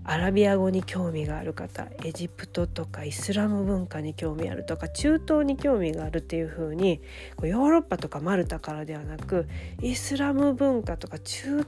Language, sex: Japanese, female